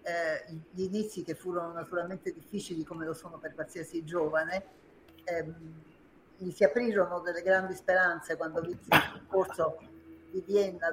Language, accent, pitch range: Italian, native, 165-195 Hz